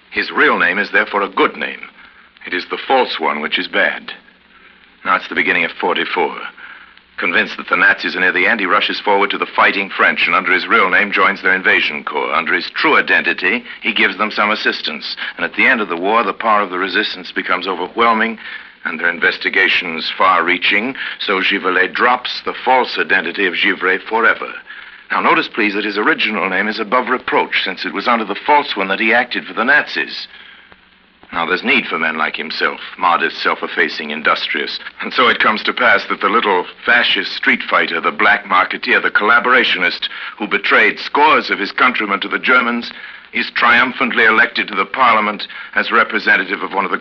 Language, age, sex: English, 60-79, male